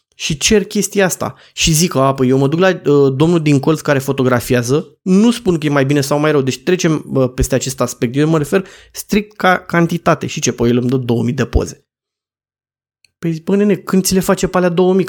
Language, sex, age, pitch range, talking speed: Romanian, male, 20-39, 135-185 Hz, 225 wpm